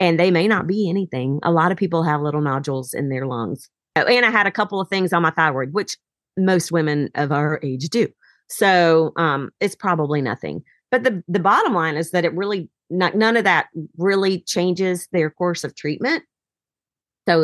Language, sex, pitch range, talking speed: English, female, 145-185 Hz, 205 wpm